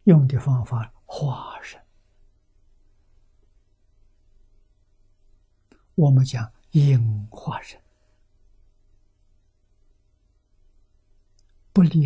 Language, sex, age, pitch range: Chinese, male, 60-79, 100-130 Hz